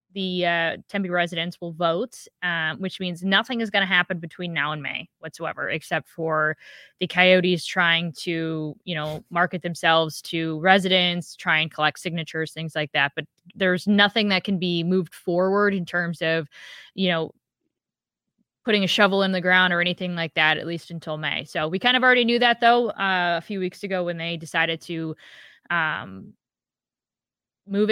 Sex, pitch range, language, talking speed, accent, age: female, 175-210 Hz, English, 180 wpm, American, 20-39